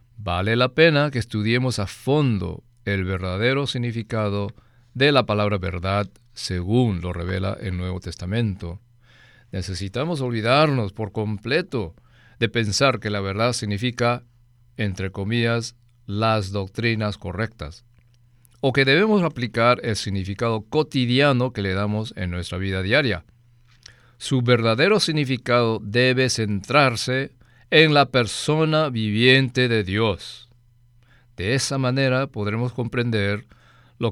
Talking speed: 120 wpm